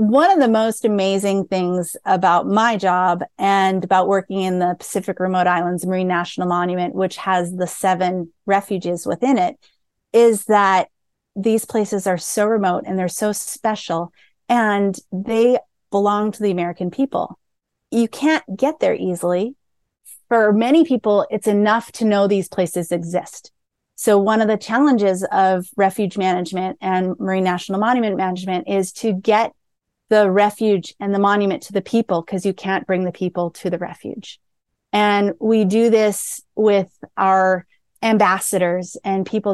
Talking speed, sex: 155 wpm, female